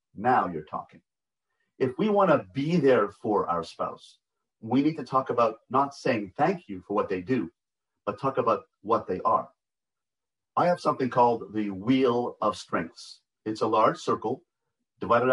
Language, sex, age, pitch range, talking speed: English, male, 40-59, 115-135 Hz, 170 wpm